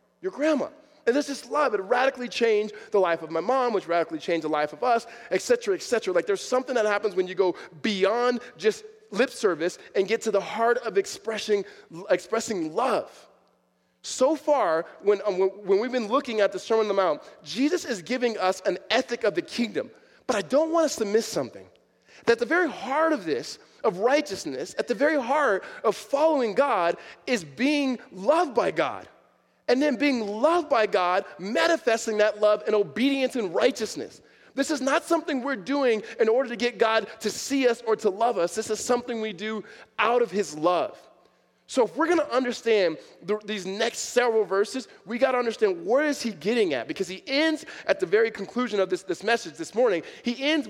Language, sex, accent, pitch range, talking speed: English, male, American, 205-280 Hz, 205 wpm